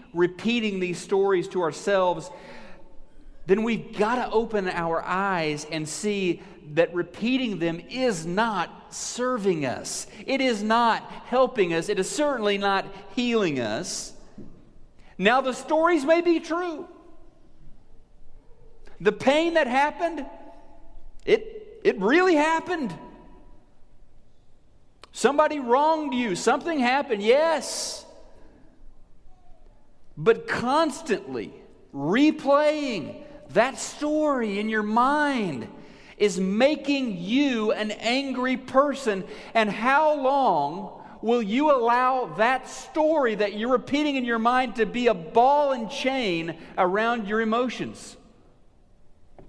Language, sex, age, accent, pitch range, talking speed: English, male, 40-59, American, 190-275 Hz, 110 wpm